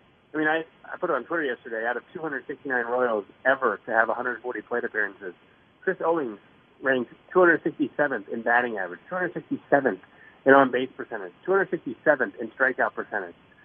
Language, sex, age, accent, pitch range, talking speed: English, male, 30-49, American, 120-175 Hz, 150 wpm